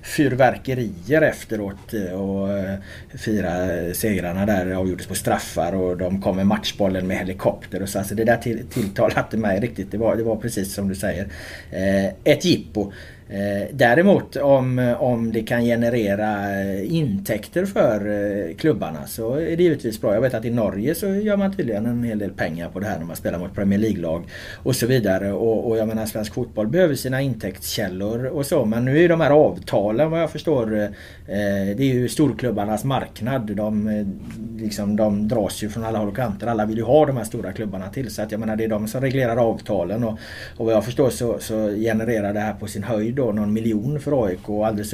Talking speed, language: 195 wpm, Swedish